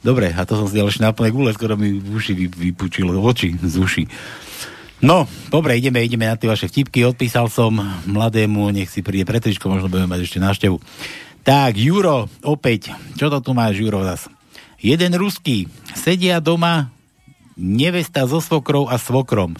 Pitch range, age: 105-150 Hz, 60-79